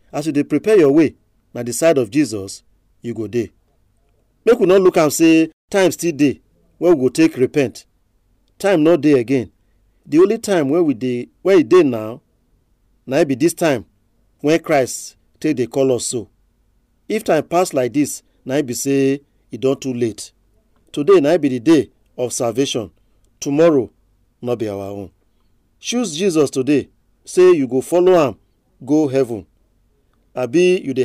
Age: 40-59